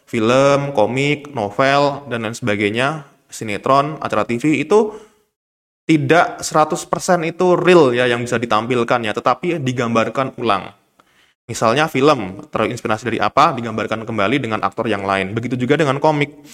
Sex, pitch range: male, 115-155 Hz